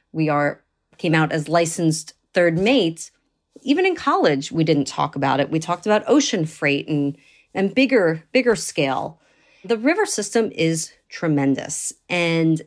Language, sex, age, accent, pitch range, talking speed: English, female, 40-59, American, 160-210 Hz, 150 wpm